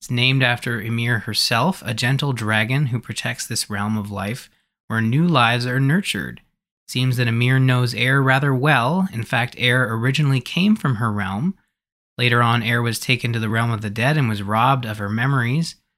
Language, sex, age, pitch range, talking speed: English, male, 20-39, 115-145 Hz, 190 wpm